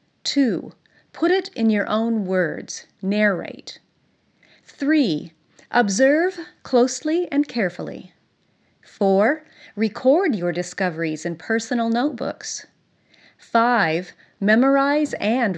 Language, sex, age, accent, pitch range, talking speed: English, female, 40-59, American, 185-275 Hz, 90 wpm